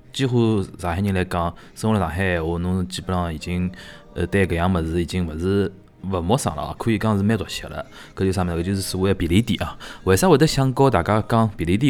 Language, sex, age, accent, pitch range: Chinese, male, 20-39, native, 90-110 Hz